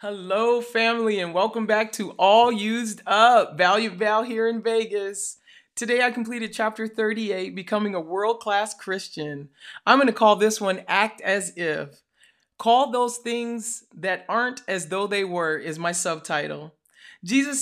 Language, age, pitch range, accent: English, 40-59, 180-235 Hz, American